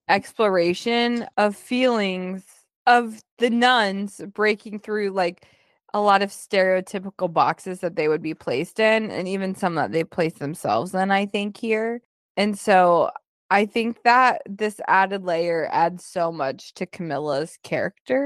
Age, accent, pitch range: 20-39, American, 185-250 Hz